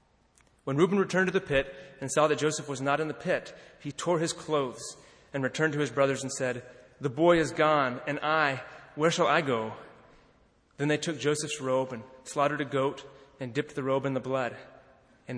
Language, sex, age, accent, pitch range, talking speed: English, male, 30-49, American, 120-145 Hz, 205 wpm